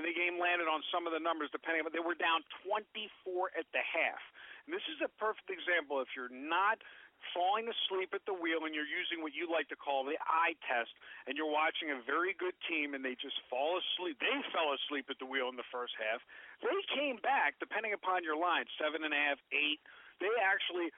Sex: male